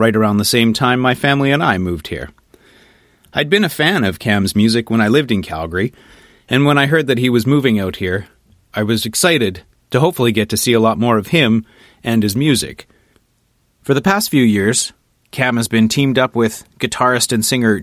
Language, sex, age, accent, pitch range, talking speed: English, male, 30-49, American, 105-130 Hz, 210 wpm